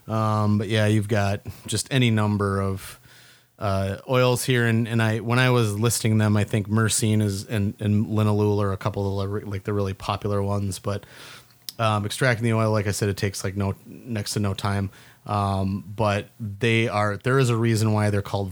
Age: 30-49